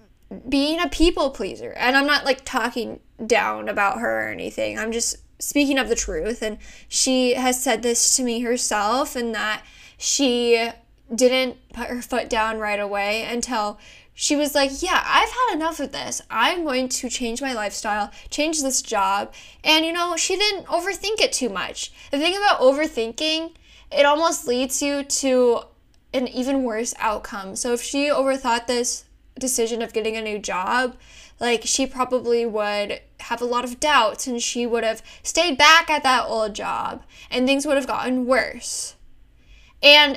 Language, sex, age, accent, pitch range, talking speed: English, female, 10-29, American, 230-290 Hz, 175 wpm